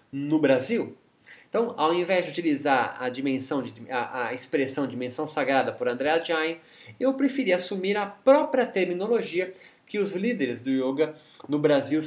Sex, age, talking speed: male, 20-39, 160 wpm